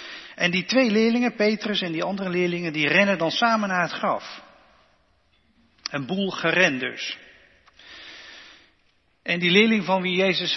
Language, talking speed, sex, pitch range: Dutch, 150 wpm, male, 155-195 Hz